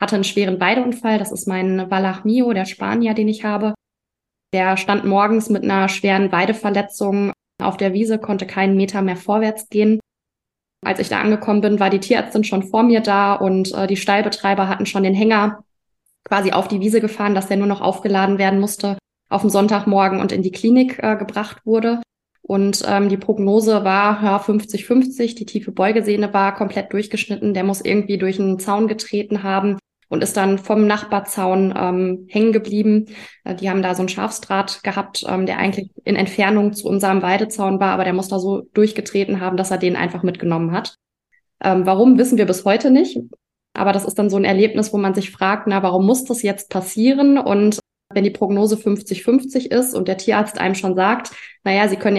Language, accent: English, German